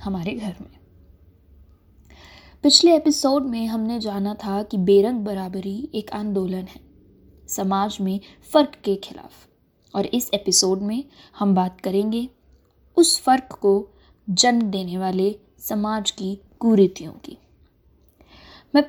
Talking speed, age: 120 wpm, 20-39